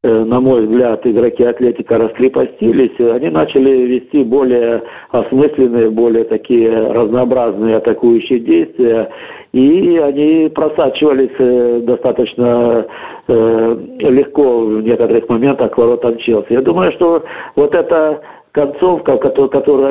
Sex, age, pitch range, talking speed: male, 50-69, 115-150 Hz, 105 wpm